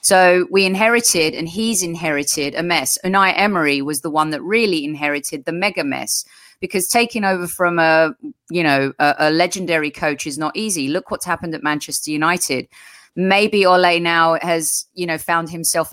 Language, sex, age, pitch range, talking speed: English, female, 30-49, 155-190 Hz, 175 wpm